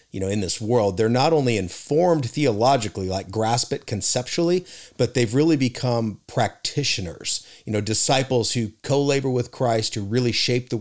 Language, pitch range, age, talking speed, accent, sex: English, 100-125 Hz, 40-59, 165 wpm, American, male